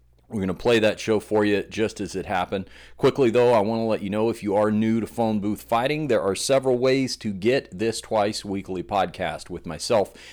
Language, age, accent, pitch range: English, 40-59, American, 95-110 Hz